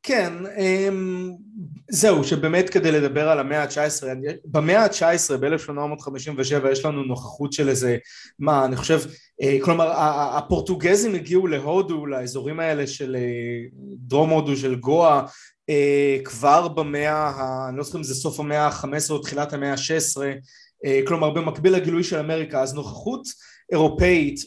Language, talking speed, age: Hebrew, 130 wpm, 20-39